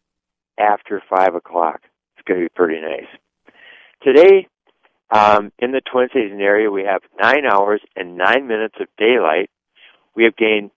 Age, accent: 60-79, American